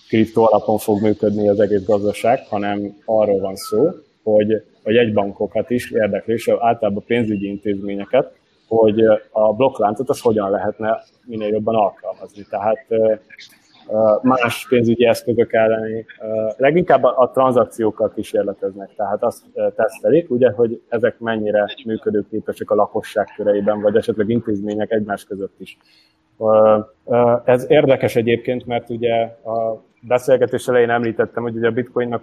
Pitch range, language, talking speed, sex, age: 105-120 Hz, Hungarian, 125 wpm, male, 20-39